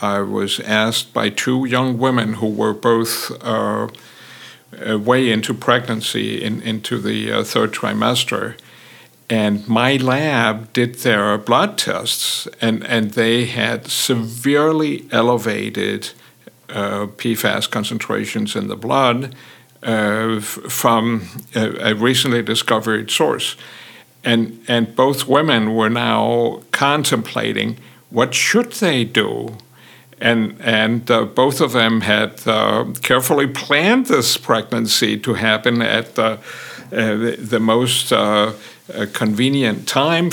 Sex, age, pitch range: male, 60-79, 115-135 Hz